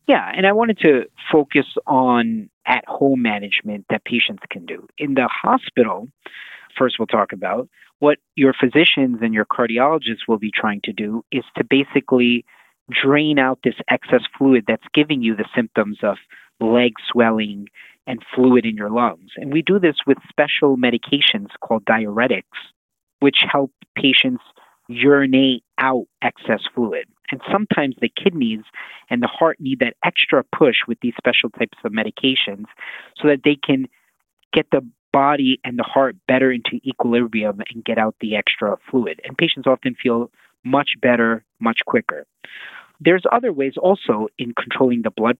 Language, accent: English, American